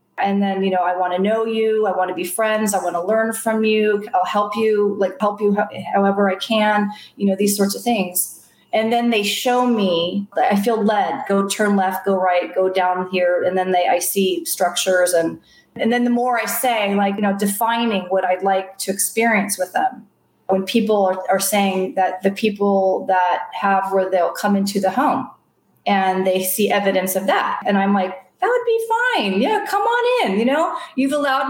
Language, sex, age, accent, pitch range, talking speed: English, female, 30-49, American, 190-235 Hz, 215 wpm